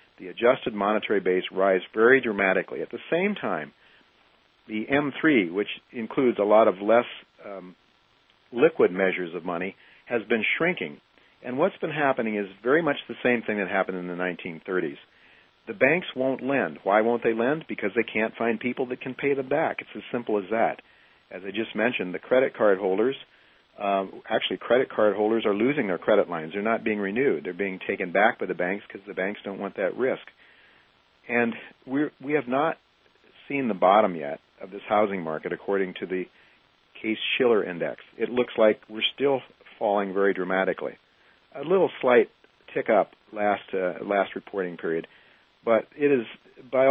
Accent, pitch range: American, 95-125 Hz